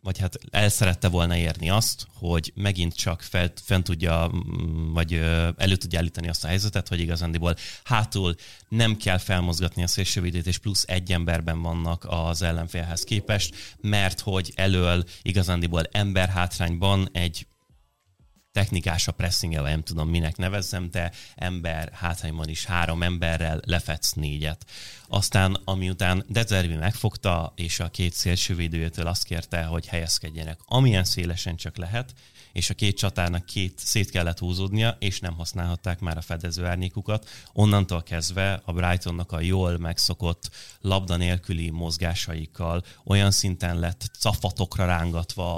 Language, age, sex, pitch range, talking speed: Hungarian, 30-49, male, 85-100 Hz, 140 wpm